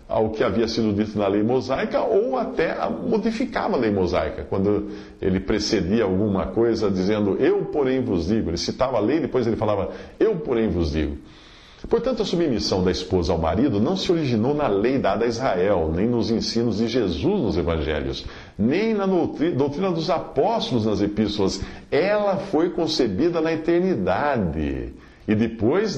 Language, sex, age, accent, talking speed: Portuguese, male, 50-69, Brazilian, 165 wpm